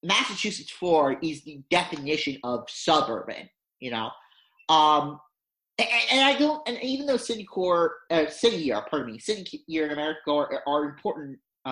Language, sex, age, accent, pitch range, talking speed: English, male, 30-49, American, 145-200 Hz, 165 wpm